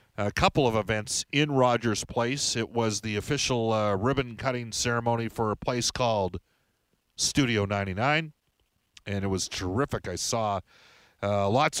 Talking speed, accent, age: 140 wpm, American, 40-59